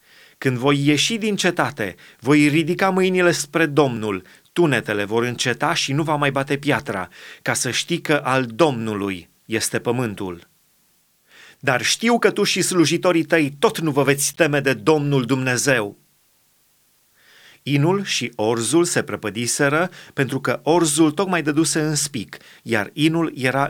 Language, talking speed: Romanian, 145 wpm